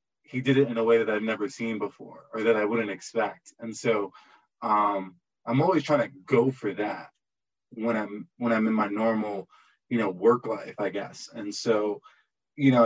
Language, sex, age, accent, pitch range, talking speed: English, male, 20-39, American, 105-130 Hz, 200 wpm